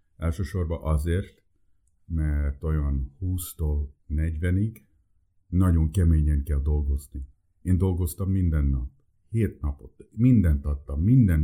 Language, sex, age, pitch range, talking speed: Hungarian, male, 50-69, 80-95 Hz, 100 wpm